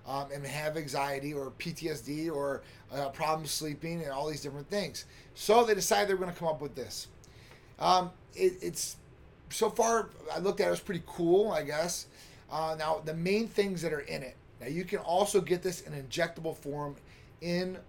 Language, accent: English, American